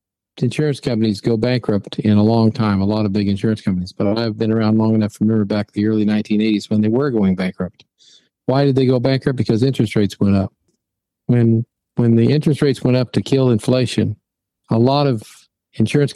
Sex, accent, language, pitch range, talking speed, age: male, American, English, 105-120 Hz, 205 wpm, 50-69